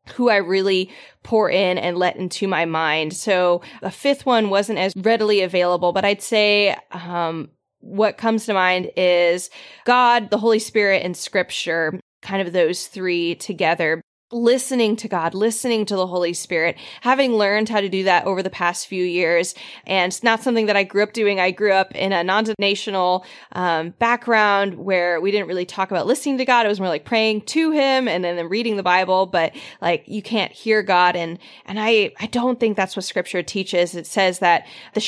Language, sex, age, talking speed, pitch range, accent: English, female, 20-39, 195 wpm, 175-215 Hz, American